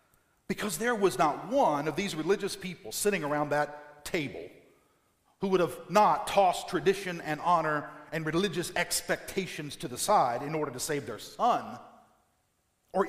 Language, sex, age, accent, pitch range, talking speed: English, male, 50-69, American, 145-215 Hz, 155 wpm